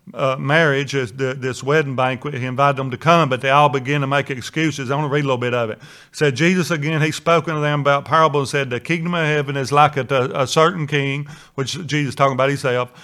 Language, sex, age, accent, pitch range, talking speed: English, male, 40-59, American, 140-165 Hz, 250 wpm